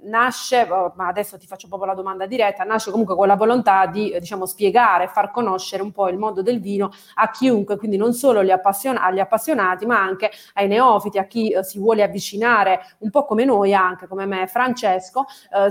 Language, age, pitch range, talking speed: Italian, 30-49, 195-235 Hz, 190 wpm